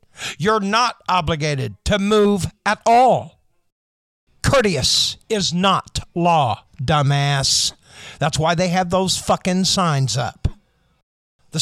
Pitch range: 140-205 Hz